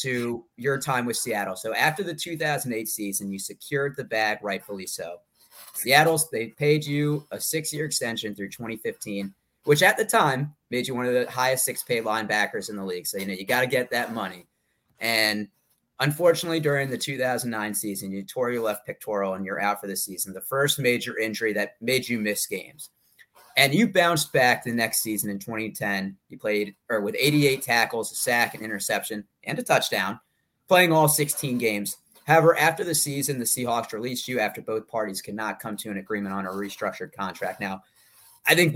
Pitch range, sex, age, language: 105-145 Hz, male, 30-49, English